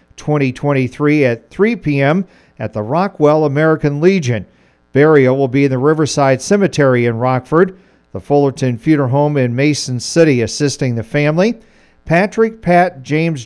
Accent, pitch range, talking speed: American, 125-160 Hz, 140 wpm